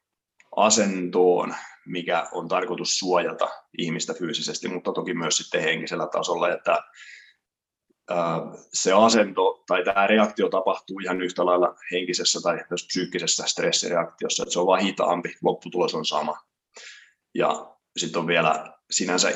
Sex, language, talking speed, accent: male, Finnish, 120 wpm, native